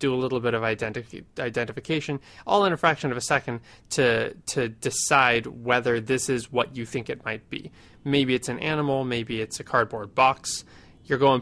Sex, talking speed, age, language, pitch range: male, 190 wpm, 20-39, English, 115-145 Hz